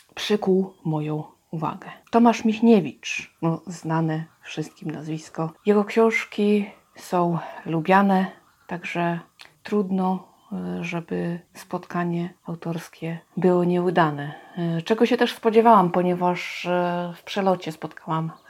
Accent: native